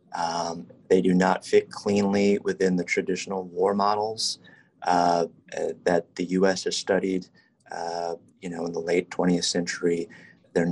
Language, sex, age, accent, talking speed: English, male, 30-49, American, 150 wpm